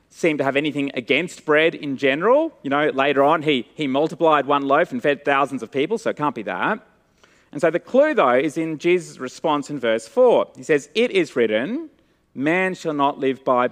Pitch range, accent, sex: 140-230 Hz, Australian, male